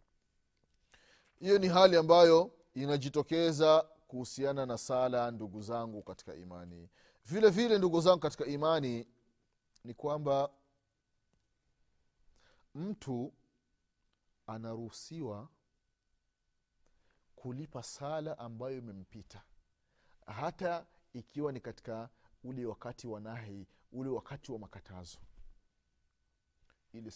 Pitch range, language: 115-165 Hz, Swahili